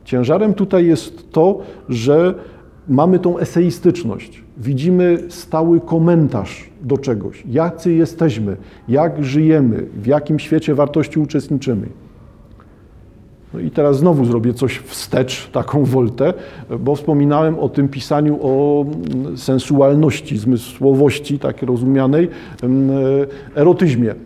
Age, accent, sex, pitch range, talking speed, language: 50-69, native, male, 130-160 Hz, 105 wpm, Polish